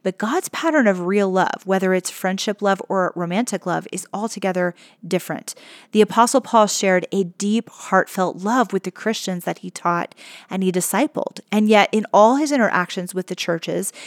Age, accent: 30-49, American